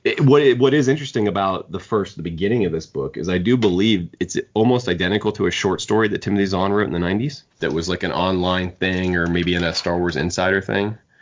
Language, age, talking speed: English, 30-49, 245 wpm